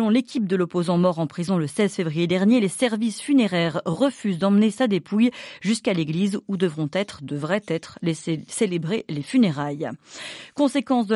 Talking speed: 160 wpm